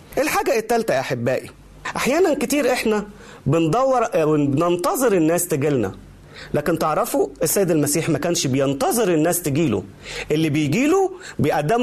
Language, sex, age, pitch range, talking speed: Arabic, male, 40-59, 175-285 Hz, 115 wpm